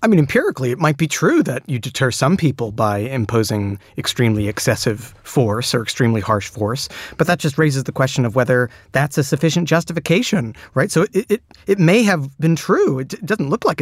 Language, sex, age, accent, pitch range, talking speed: English, male, 30-49, American, 125-155 Hz, 200 wpm